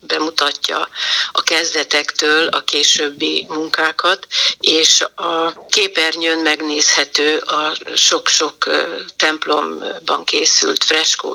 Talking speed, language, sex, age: 80 wpm, Hungarian, female, 60-79